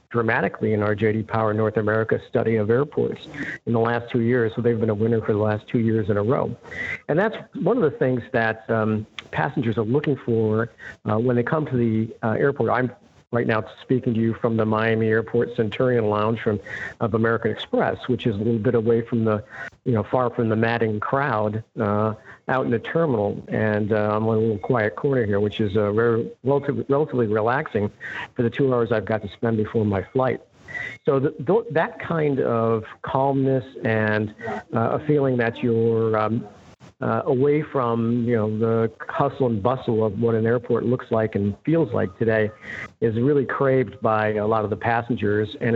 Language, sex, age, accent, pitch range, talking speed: English, male, 50-69, American, 110-130 Hz, 195 wpm